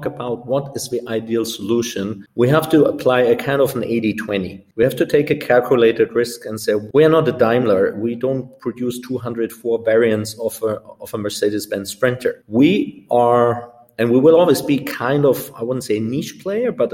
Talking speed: 195 wpm